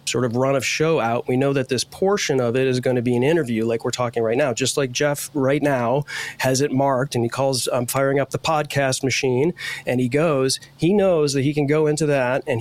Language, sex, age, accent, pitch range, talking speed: English, male, 30-49, American, 125-150 Hz, 255 wpm